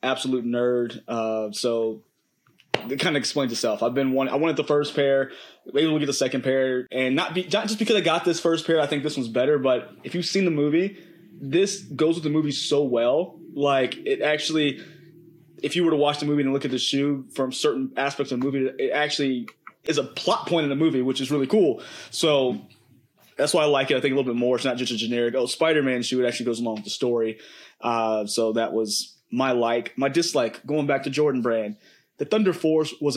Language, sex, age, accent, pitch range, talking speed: English, male, 20-39, American, 130-160 Hz, 235 wpm